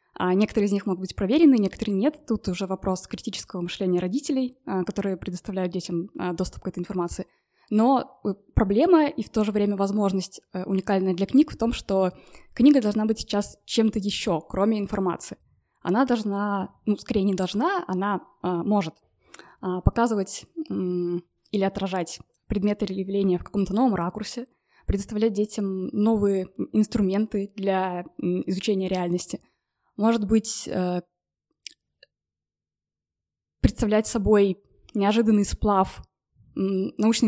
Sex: female